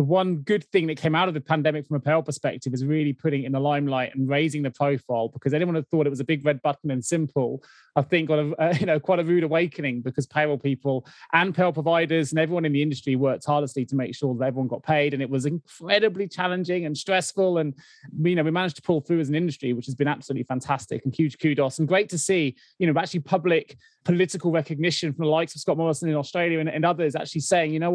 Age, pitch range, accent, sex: 20-39, 145-175 Hz, British, male